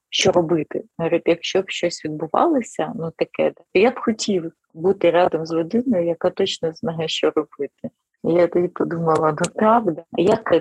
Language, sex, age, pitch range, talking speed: Ukrainian, female, 30-49, 155-185 Hz, 160 wpm